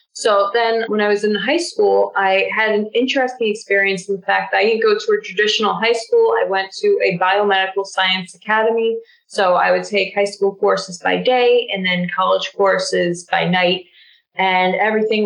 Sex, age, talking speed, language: female, 20-39, 195 wpm, English